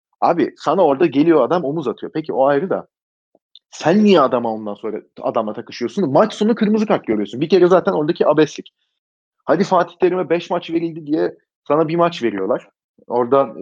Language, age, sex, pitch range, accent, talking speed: Turkish, 30-49, male, 135-195 Hz, native, 175 wpm